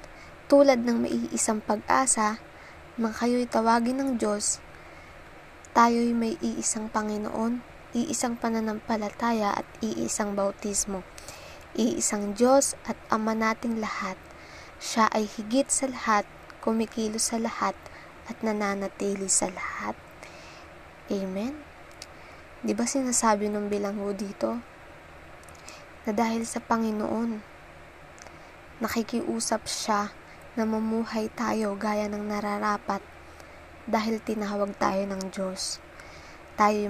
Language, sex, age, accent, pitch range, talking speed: Filipino, female, 20-39, native, 200-235 Hz, 100 wpm